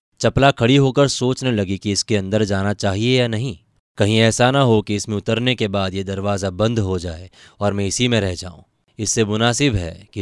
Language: Hindi